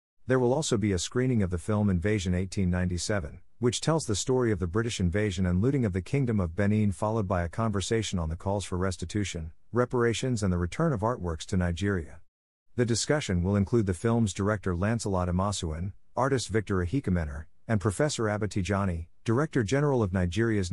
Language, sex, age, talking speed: English, male, 50-69, 180 wpm